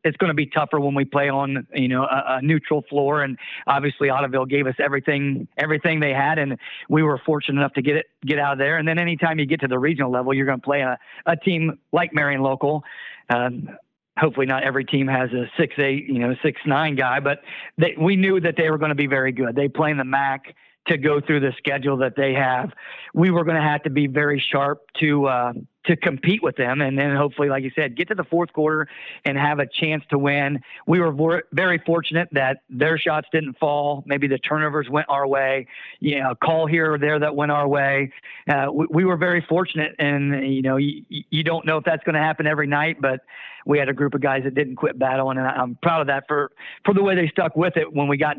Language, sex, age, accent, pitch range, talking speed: English, male, 40-59, American, 135-155 Hz, 245 wpm